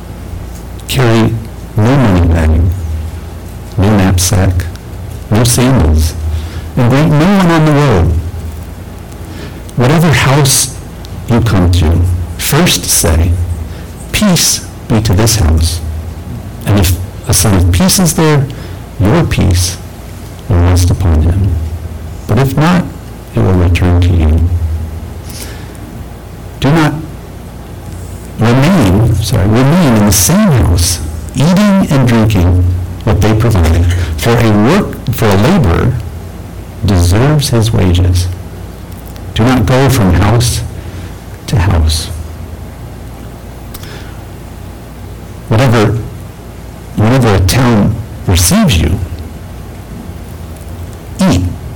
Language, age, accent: English, 60-79, American